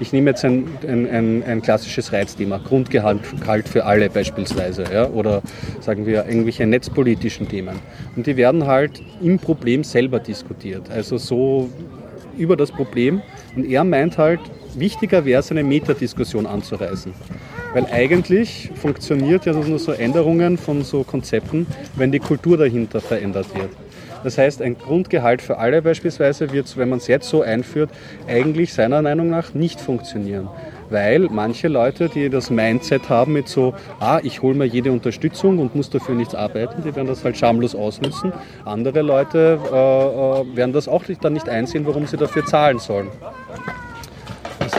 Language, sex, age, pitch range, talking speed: German, male, 30-49, 115-150 Hz, 155 wpm